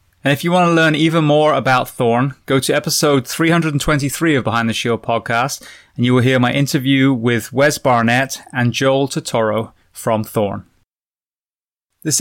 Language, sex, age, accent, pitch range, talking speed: English, male, 20-39, British, 115-140 Hz, 165 wpm